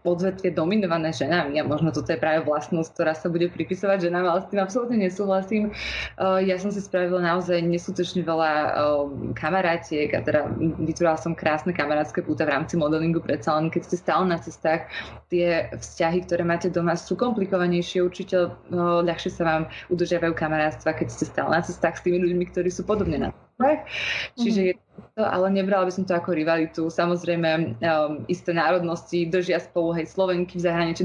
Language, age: Slovak, 20-39